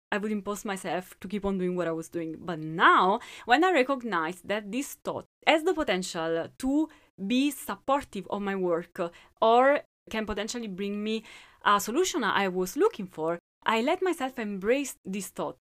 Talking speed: 175 wpm